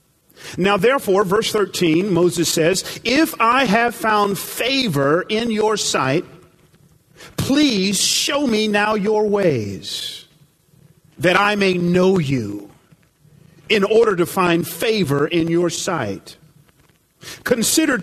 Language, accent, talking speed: English, American, 115 wpm